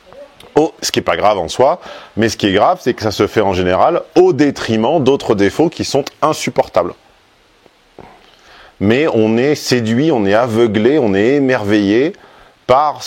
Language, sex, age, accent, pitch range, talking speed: French, male, 40-59, French, 95-125 Hz, 175 wpm